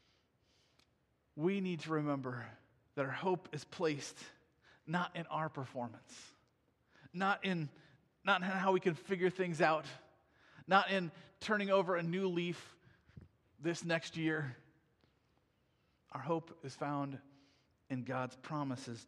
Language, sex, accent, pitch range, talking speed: English, male, American, 155-210 Hz, 125 wpm